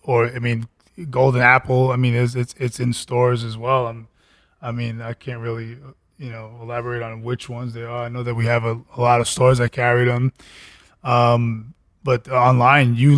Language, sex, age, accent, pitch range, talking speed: English, male, 20-39, American, 115-130 Hz, 205 wpm